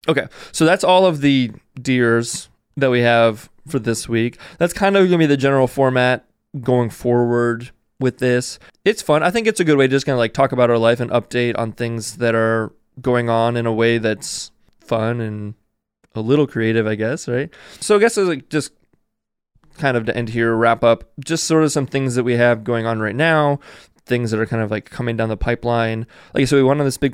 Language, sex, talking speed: English, male, 230 wpm